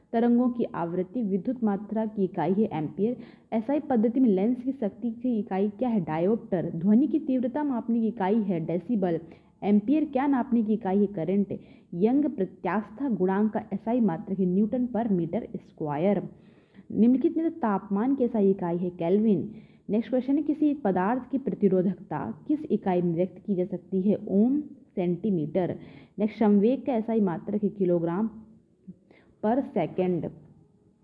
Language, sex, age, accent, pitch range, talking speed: Hindi, female, 30-49, native, 190-255 Hz, 155 wpm